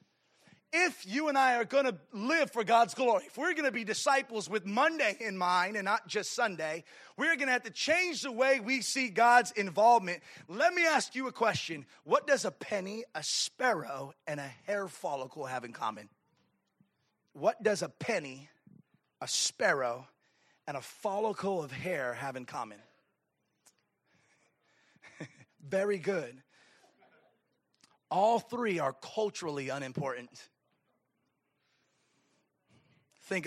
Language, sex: English, male